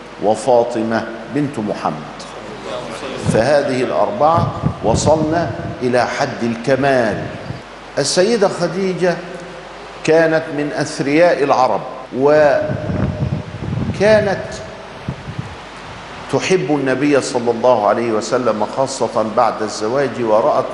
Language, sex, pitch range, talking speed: Arabic, male, 125-160 Hz, 75 wpm